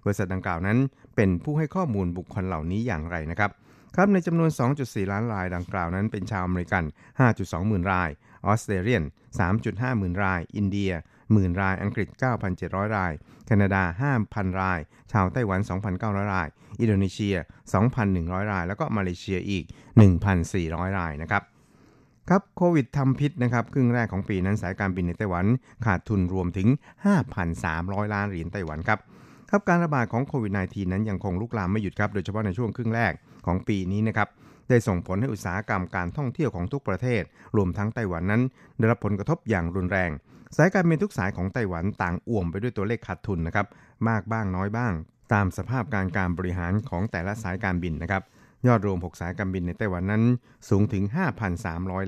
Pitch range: 95-120 Hz